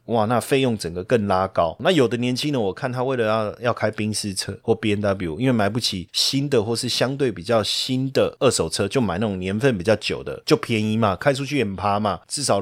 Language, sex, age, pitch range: Chinese, male, 20-39, 105-135 Hz